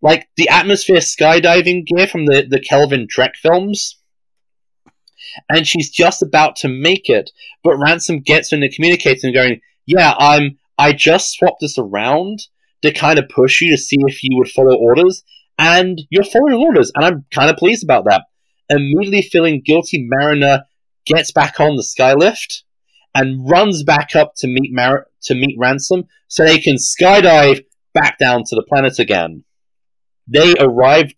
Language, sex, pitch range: English, male, 135-180 Hz